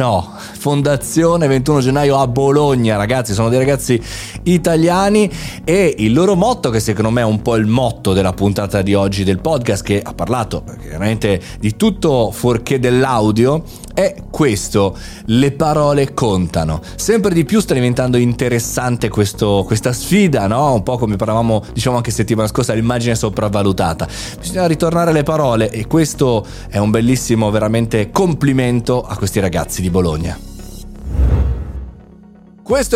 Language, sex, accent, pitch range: Italian, male, native, 110-155 Hz